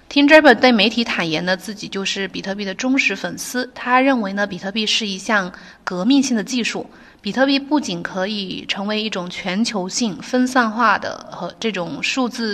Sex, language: female, Chinese